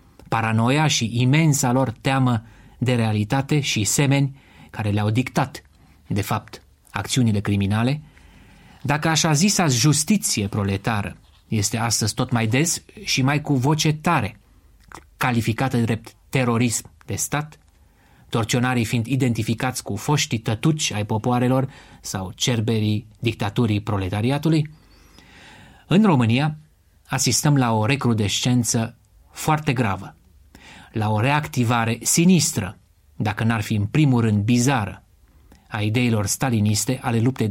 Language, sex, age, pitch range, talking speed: Romanian, male, 30-49, 105-135 Hz, 115 wpm